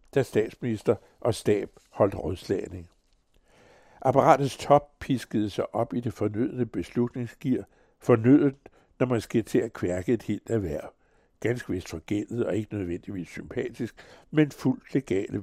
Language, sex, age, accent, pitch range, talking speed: Danish, male, 60-79, American, 100-130 Hz, 140 wpm